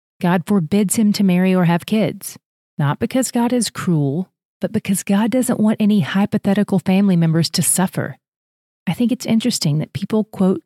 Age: 30-49